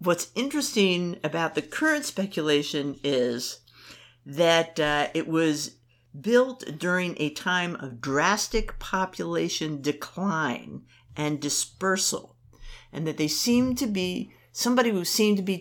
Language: English